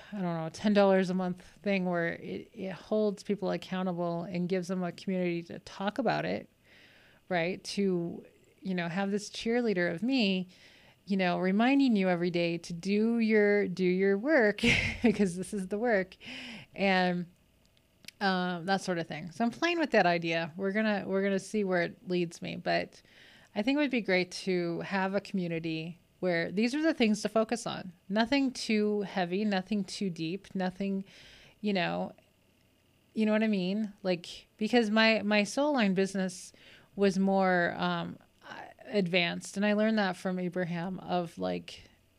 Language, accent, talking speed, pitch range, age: English, American, 175 wpm, 175-210 Hz, 20-39